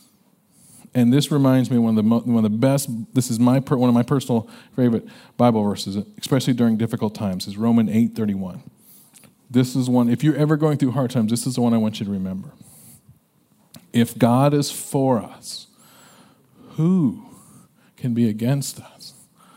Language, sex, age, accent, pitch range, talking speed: English, male, 40-59, American, 120-165 Hz, 185 wpm